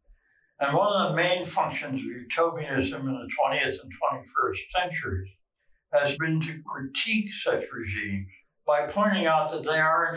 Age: 60-79